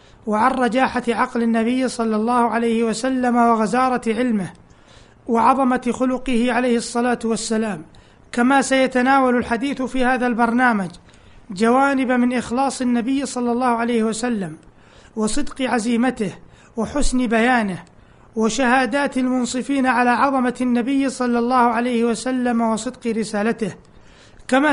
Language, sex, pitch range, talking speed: Arabic, male, 230-255 Hz, 110 wpm